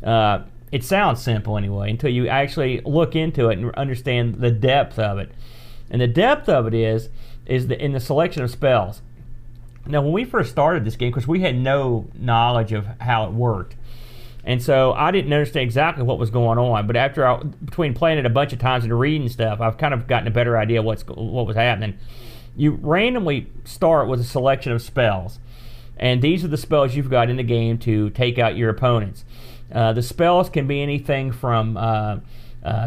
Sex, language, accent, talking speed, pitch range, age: male, English, American, 205 wpm, 115-140 Hz, 40-59